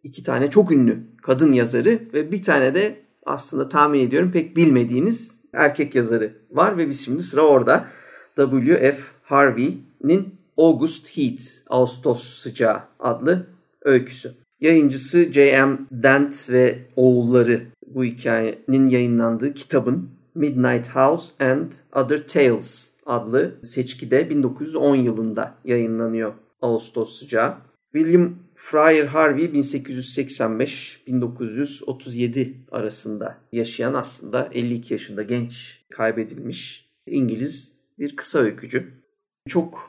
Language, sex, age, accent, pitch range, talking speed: English, male, 50-69, Turkish, 120-145 Hz, 100 wpm